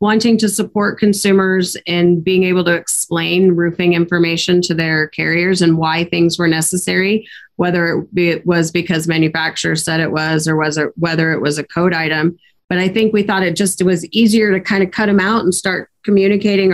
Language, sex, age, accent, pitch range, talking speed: English, female, 30-49, American, 165-185 Hz, 190 wpm